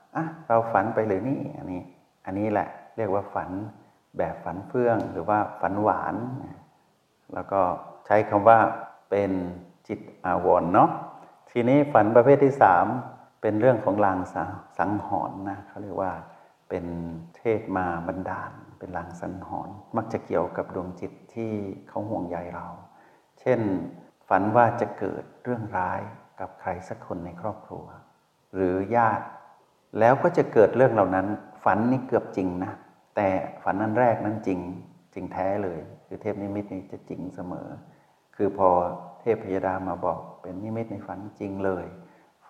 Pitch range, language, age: 95-110 Hz, Thai, 60-79